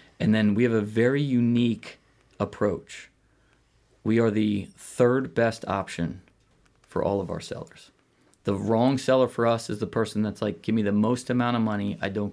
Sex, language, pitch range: male, English, 100-120 Hz